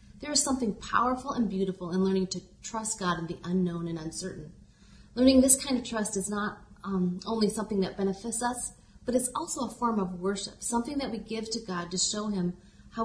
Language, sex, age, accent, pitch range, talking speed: English, female, 30-49, American, 185-230 Hz, 210 wpm